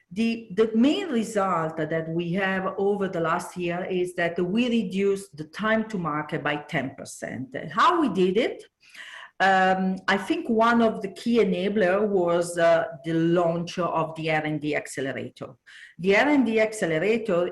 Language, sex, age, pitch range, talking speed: Italian, female, 50-69, 155-210 Hz, 150 wpm